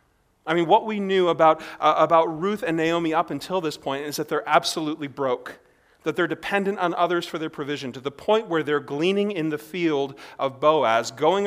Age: 40-59